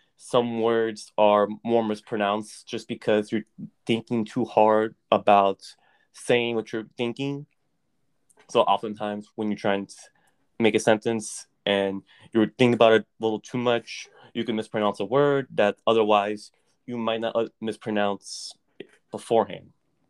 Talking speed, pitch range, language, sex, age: 135 wpm, 105-125 Hz, English, male, 20-39